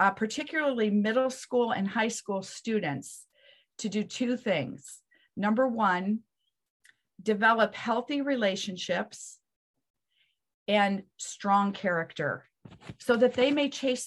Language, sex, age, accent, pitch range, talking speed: English, female, 40-59, American, 195-240 Hz, 105 wpm